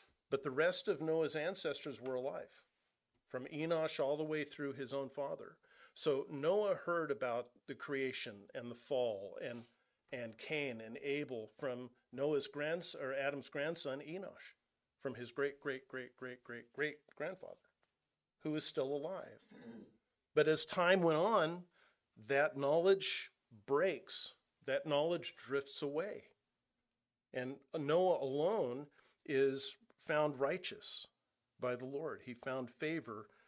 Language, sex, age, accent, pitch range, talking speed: English, male, 40-59, American, 135-160 Hz, 135 wpm